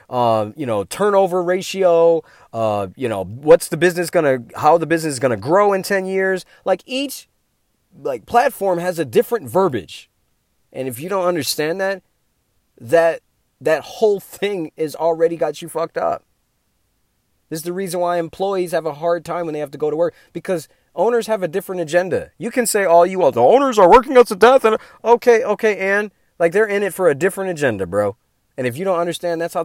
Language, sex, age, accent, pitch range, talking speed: English, male, 30-49, American, 130-190 Hz, 210 wpm